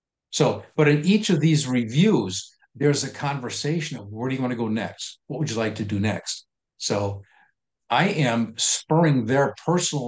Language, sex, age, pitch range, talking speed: English, male, 50-69, 105-150 Hz, 180 wpm